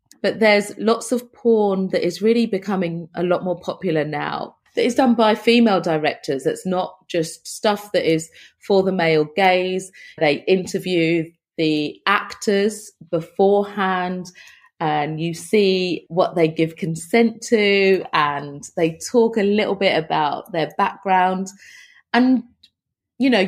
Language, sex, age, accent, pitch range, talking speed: English, female, 30-49, British, 170-225 Hz, 140 wpm